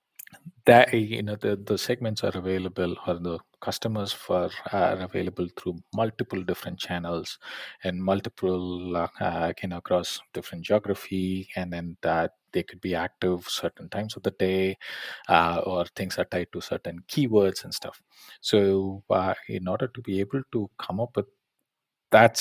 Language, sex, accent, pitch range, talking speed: English, male, Indian, 90-100 Hz, 165 wpm